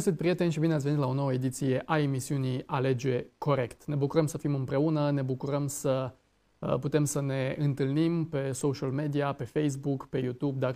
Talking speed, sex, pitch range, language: 175 wpm, male, 130-160 Hz, Romanian